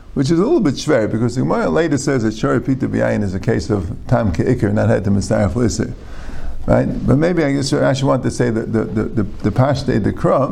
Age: 50-69